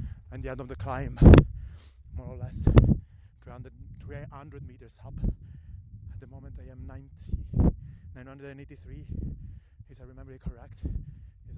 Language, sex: English, male